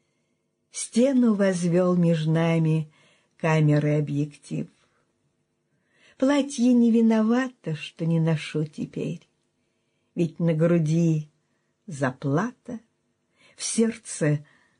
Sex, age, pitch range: female, 50-69, 150-200 Hz